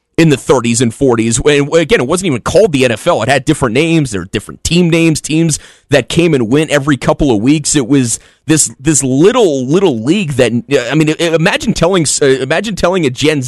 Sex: male